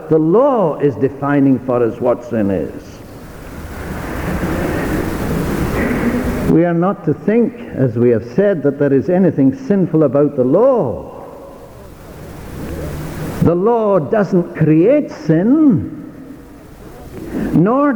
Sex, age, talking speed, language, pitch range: male, 60-79, 105 wpm, English, 170-245 Hz